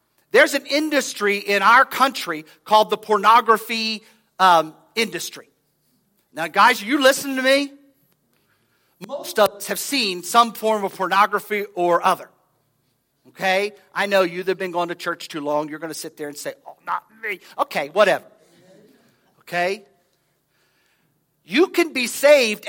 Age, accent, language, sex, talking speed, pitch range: 50-69, American, English, male, 155 wpm, 170-255 Hz